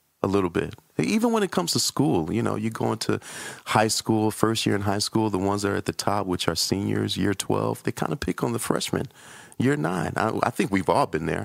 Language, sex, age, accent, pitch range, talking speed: English, male, 40-59, American, 110-150 Hz, 255 wpm